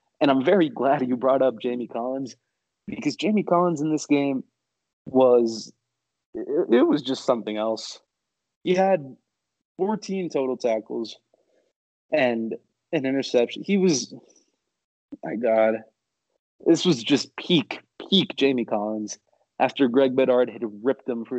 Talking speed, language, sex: 135 wpm, English, male